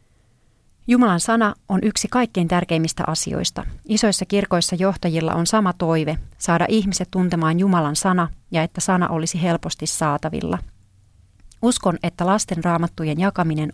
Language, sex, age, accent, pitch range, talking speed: Finnish, female, 30-49, native, 155-190 Hz, 125 wpm